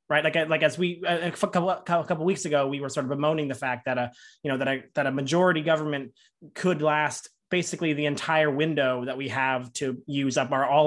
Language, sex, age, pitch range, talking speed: English, male, 20-39, 140-175 Hz, 230 wpm